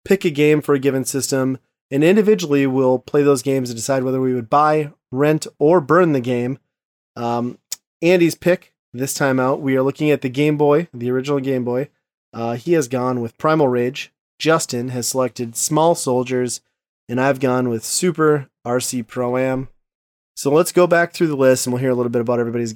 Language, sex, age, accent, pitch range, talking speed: English, male, 30-49, American, 125-145 Hz, 200 wpm